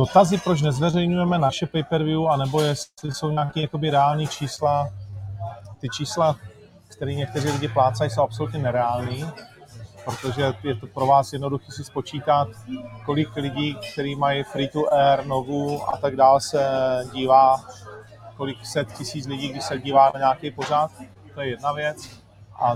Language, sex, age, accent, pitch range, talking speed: Czech, male, 30-49, native, 125-150 Hz, 150 wpm